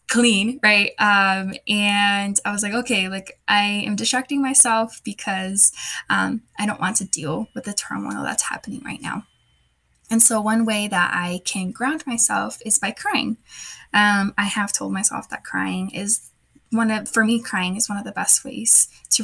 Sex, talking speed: female, 185 wpm